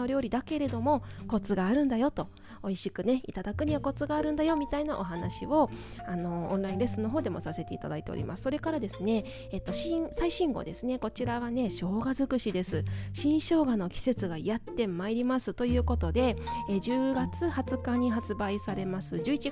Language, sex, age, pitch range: Japanese, female, 20-39, 185-265 Hz